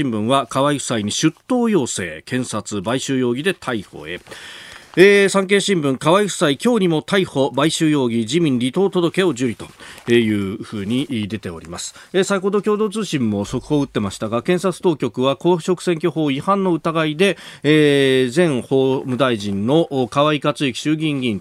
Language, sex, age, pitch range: Japanese, male, 40-59, 105-150 Hz